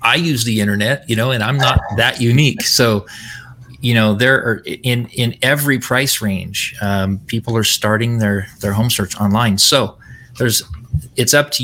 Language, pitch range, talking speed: English, 105-125 Hz, 180 wpm